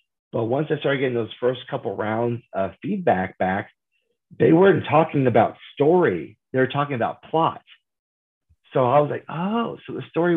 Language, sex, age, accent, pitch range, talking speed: English, male, 30-49, American, 105-135 Hz, 175 wpm